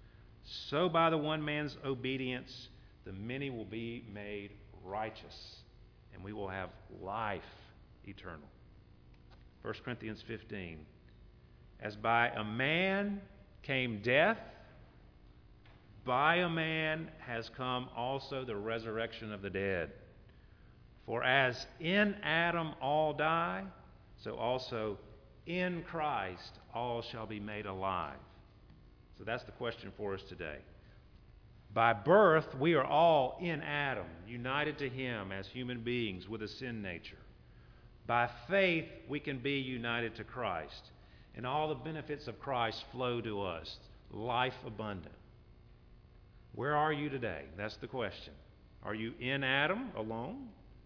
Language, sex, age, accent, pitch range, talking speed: English, male, 50-69, American, 105-135 Hz, 125 wpm